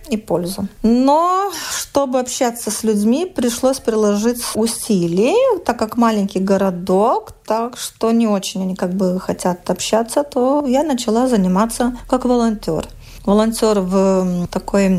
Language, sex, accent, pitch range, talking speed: Russian, female, native, 195-250 Hz, 130 wpm